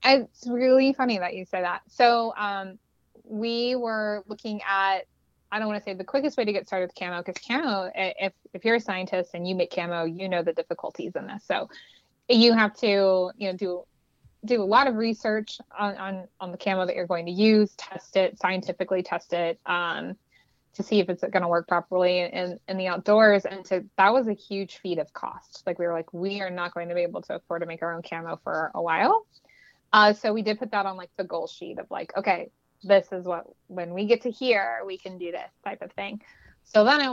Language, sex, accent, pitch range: English, female, American, 185-215 Hz